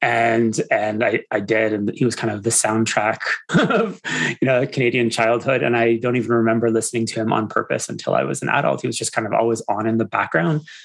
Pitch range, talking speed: 110-125 Hz, 230 wpm